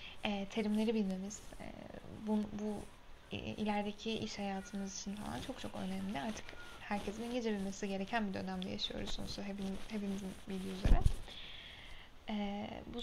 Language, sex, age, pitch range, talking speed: Turkish, female, 10-29, 195-220 Hz, 135 wpm